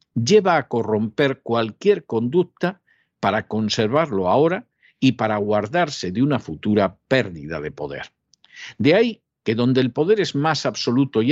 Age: 50-69